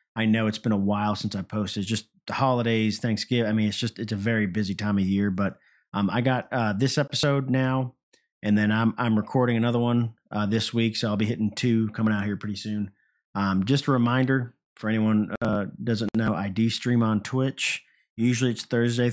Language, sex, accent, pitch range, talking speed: English, male, American, 105-125 Hz, 215 wpm